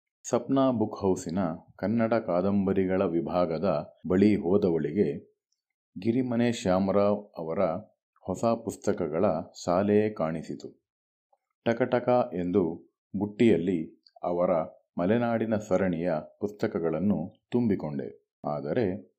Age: 40-59